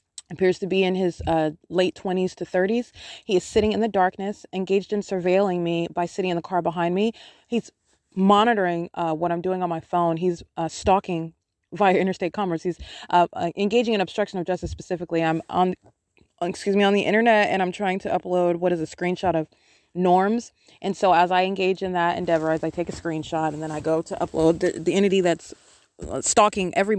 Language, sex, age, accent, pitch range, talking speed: English, female, 20-39, American, 170-195 Hz, 205 wpm